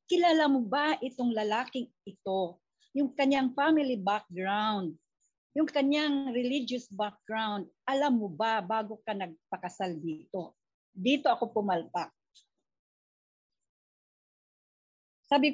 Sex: female